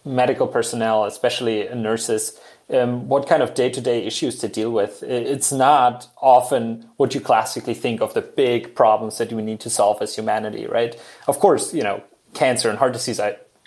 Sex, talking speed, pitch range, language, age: male, 195 wpm, 115-145 Hz, English, 20-39